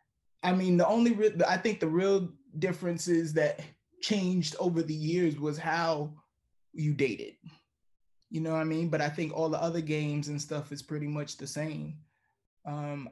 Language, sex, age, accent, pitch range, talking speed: English, male, 20-39, American, 150-165 Hz, 175 wpm